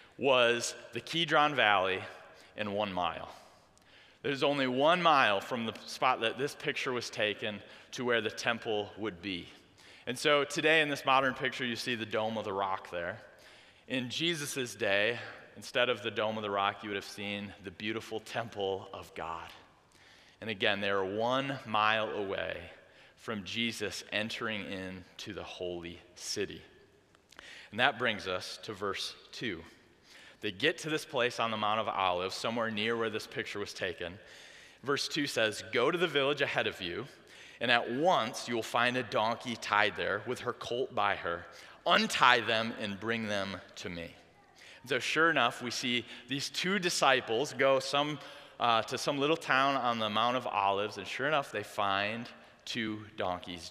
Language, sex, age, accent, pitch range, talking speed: English, male, 30-49, American, 100-130 Hz, 170 wpm